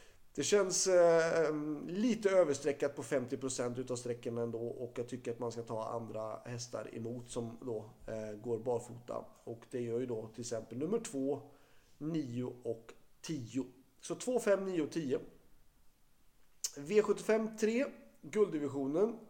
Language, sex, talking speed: Swedish, male, 135 wpm